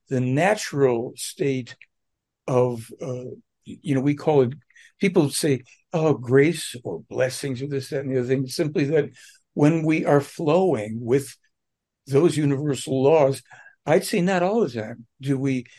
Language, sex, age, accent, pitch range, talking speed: English, male, 60-79, American, 130-160 Hz, 155 wpm